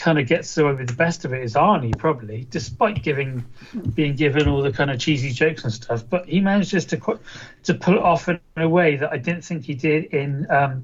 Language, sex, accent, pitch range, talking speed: English, male, British, 125-165 Hz, 245 wpm